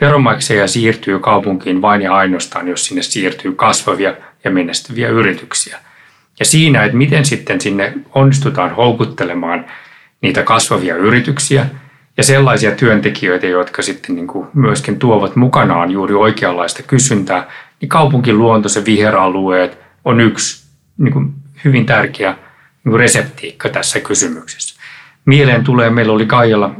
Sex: male